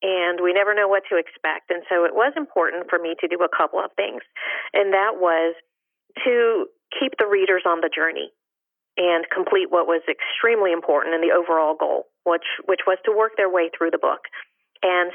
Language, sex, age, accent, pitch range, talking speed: English, female, 40-59, American, 170-200 Hz, 200 wpm